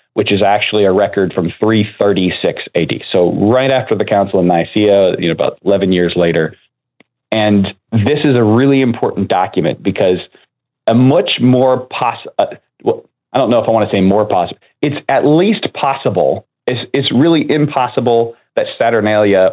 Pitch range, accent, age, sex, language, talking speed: 100-125 Hz, American, 30-49, male, English, 170 wpm